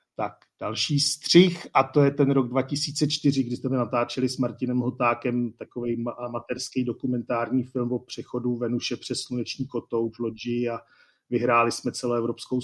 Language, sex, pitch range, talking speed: Czech, male, 115-125 Hz, 150 wpm